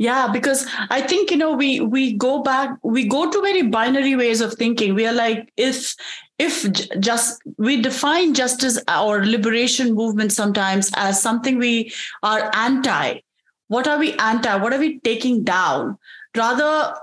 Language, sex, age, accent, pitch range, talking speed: English, female, 30-49, Indian, 215-270 Hz, 165 wpm